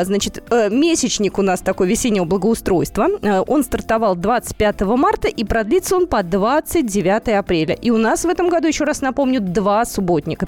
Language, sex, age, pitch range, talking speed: Russian, female, 20-39, 200-285 Hz, 160 wpm